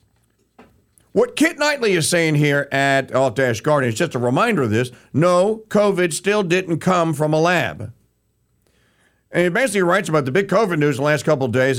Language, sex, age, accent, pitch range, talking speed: English, male, 50-69, American, 140-190 Hz, 185 wpm